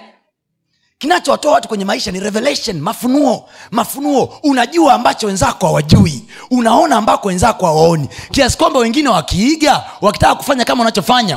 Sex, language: male, Swahili